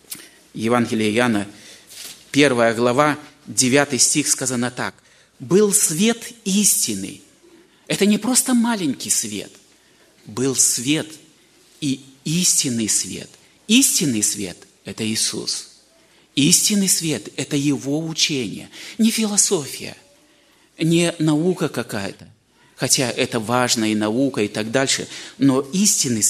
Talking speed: 105 wpm